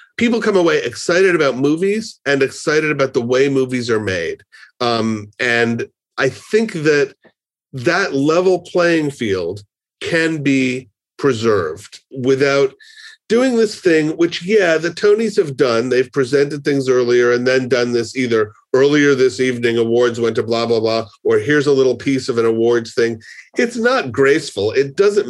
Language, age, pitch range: English, 40-59, 125-205 Hz